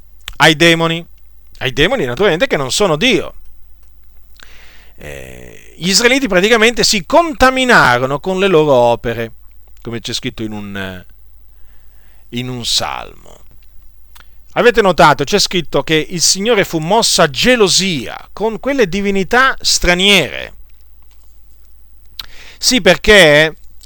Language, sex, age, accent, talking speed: Italian, male, 40-59, native, 110 wpm